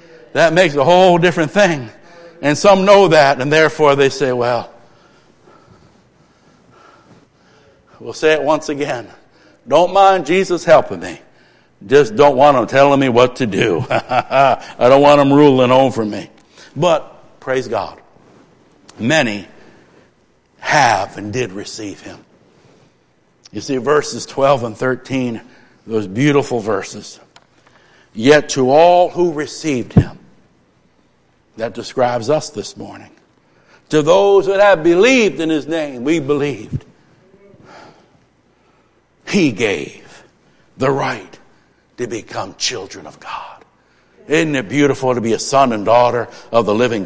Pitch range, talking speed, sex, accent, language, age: 125-185 Hz, 130 wpm, male, American, English, 60-79